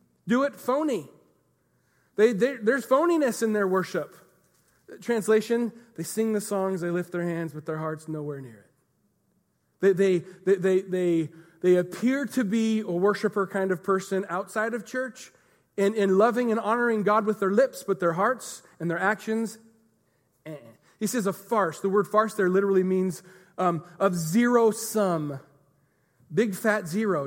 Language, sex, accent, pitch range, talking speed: English, male, American, 165-215 Hz, 165 wpm